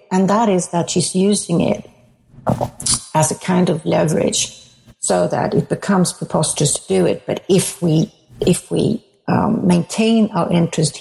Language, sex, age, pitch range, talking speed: English, female, 60-79, 155-205 Hz, 160 wpm